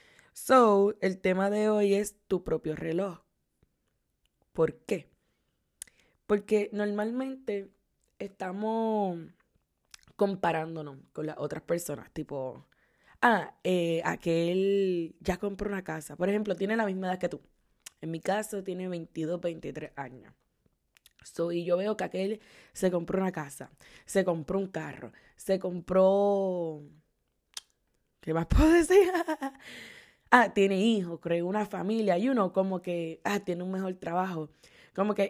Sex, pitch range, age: female, 170-205 Hz, 20-39